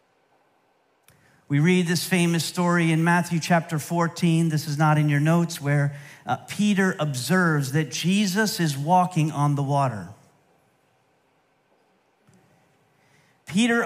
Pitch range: 155-220 Hz